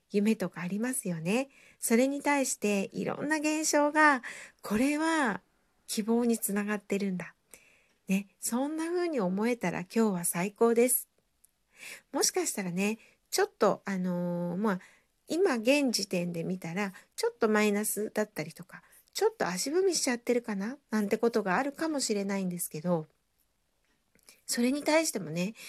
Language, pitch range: Japanese, 195-270 Hz